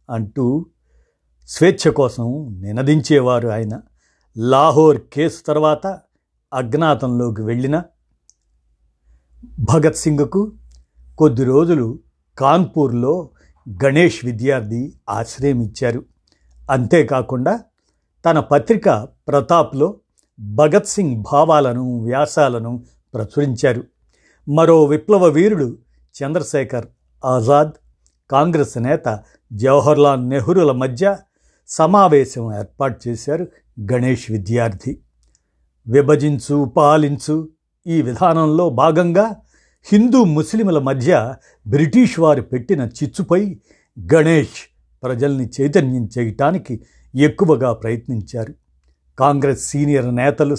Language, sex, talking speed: Telugu, male, 75 wpm